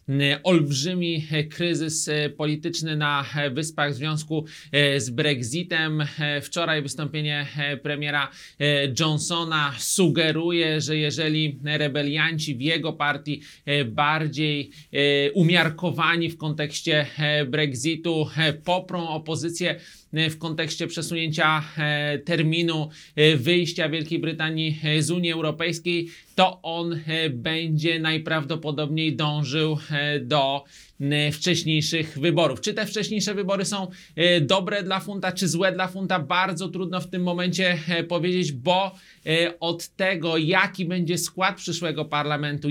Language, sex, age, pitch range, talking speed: Polish, male, 30-49, 150-170 Hz, 100 wpm